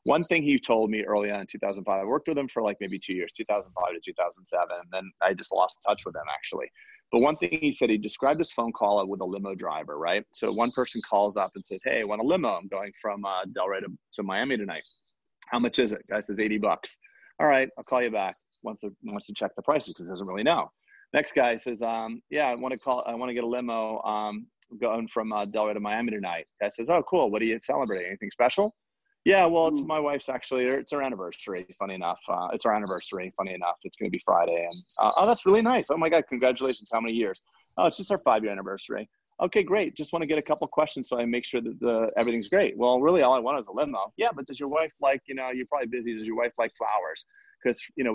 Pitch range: 105-150 Hz